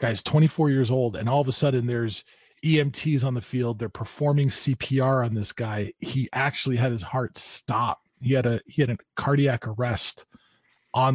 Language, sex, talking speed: English, male, 190 wpm